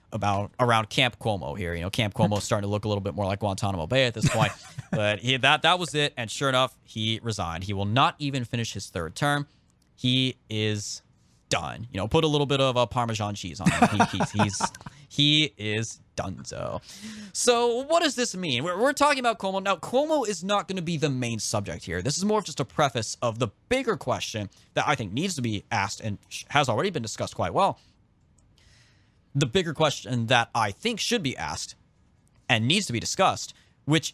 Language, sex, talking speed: English, male, 220 wpm